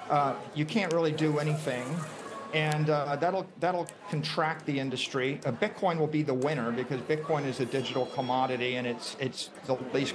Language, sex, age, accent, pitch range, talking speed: English, male, 50-69, American, 125-155 Hz, 175 wpm